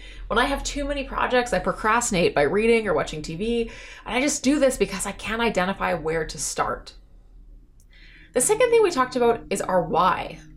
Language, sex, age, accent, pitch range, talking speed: English, female, 20-39, American, 185-255 Hz, 195 wpm